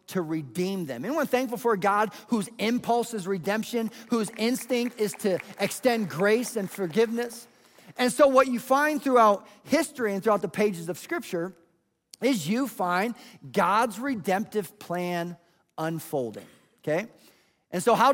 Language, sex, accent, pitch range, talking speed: English, male, American, 185-240 Hz, 145 wpm